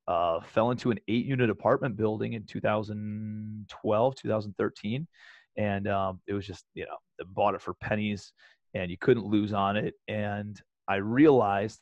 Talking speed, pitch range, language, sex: 160 wpm, 105-120 Hz, English, male